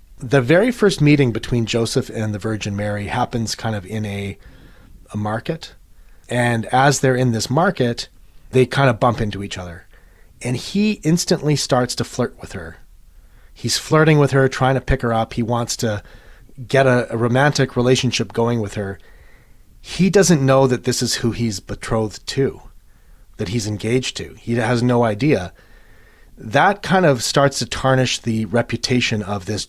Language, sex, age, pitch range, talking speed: English, male, 30-49, 105-130 Hz, 175 wpm